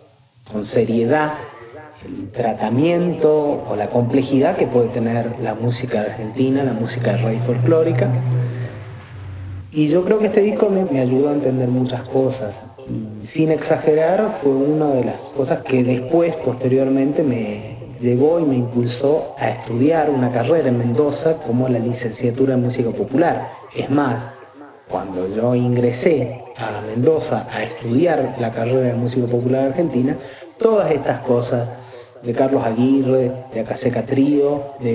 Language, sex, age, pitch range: Spanish, male, 40-59, 120-145 Hz